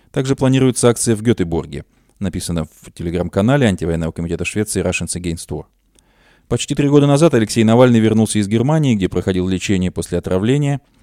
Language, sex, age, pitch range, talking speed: Russian, male, 20-39, 95-130 Hz, 150 wpm